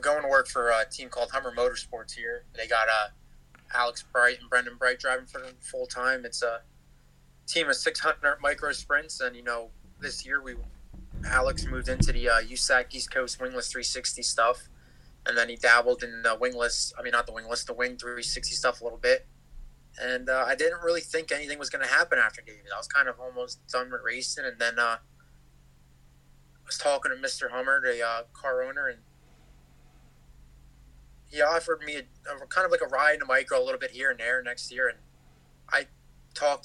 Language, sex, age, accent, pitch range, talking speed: English, male, 20-39, American, 120-145 Hz, 205 wpm